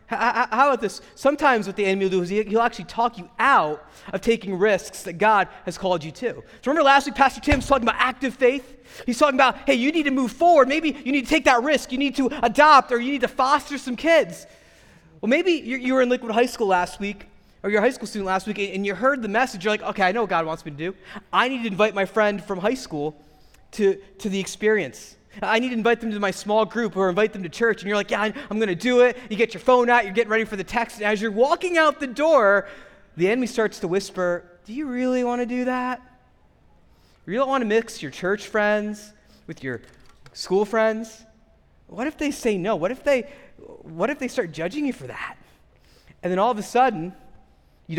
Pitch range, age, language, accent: 195-255 Hz, 30-49, English, American